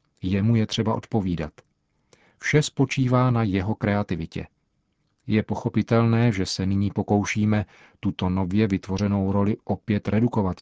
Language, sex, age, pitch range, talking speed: Czech, male, 40-59, 100-120 Hz, 120 wpm